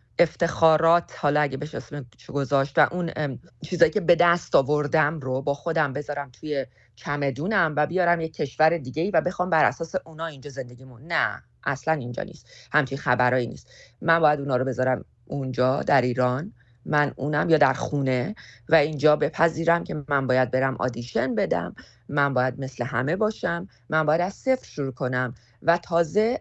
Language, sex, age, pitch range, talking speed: Persian, female, 30-49, 130-170 Hz, 170 wpm